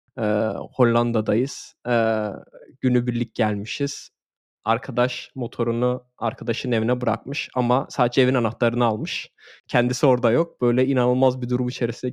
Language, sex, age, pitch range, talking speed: Turkish, male, 20-39, 120-145 Hz, 105 wpm